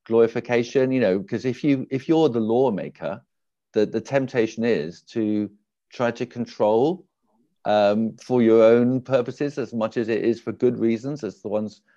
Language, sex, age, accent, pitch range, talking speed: English, male, 50-69, British, 90-120 Hz, 170 wpm